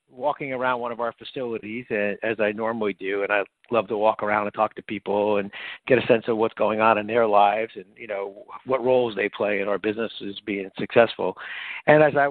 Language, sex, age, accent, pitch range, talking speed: English, male, 50-69, American, 105-125 Hz, 225 wpm